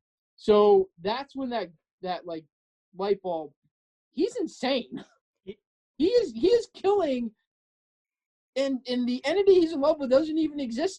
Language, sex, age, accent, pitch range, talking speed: English, male, 20-39, American, 180-275 Hz, 140 wpm